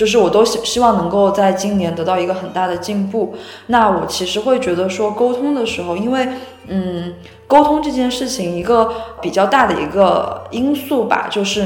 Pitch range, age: 180-230 Hz, 20-39